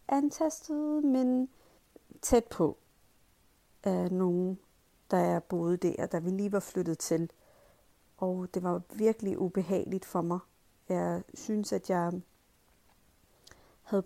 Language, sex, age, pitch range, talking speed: Danish, female, 30-49, 180-230 Hz, 125 wpm